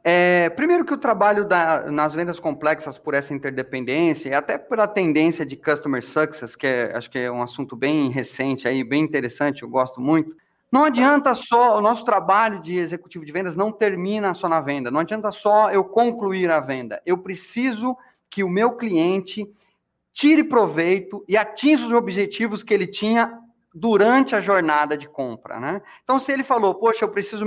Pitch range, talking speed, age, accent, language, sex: 160-225 Hz, 185 wpm, 30-49, Brazilian, Portuguese, male